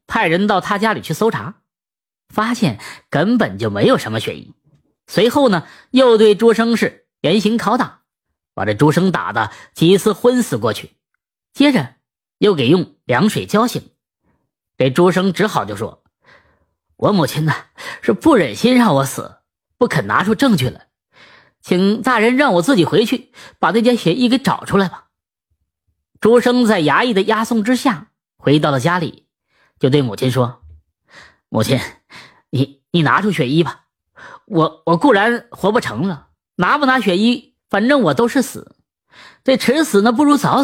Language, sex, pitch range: Chinese, female, 145-230 Hz